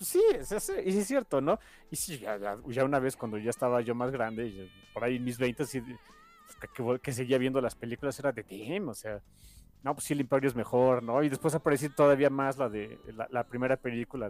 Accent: Mexican